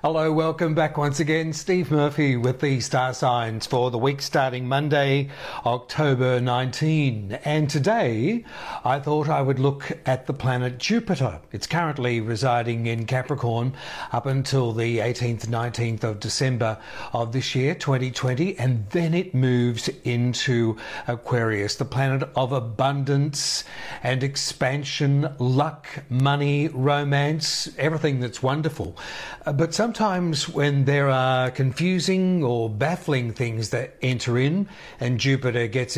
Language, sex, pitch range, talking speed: English, male, 125-150 Hz, 135 wpm